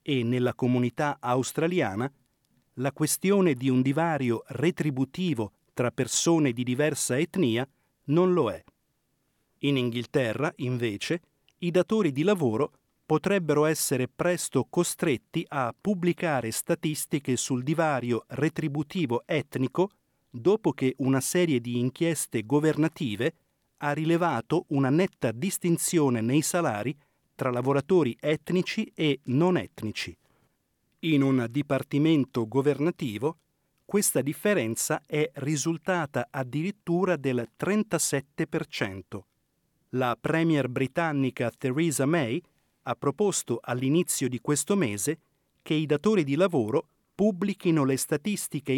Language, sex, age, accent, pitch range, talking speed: Italian, male, 40-59, native, 130-170 Hz, 105 wpm